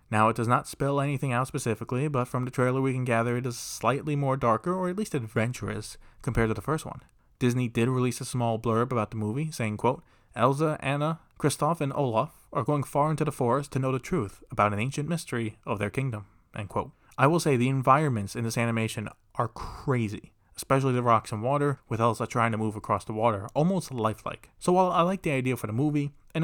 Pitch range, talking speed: 110-145 Hz, 225 wpm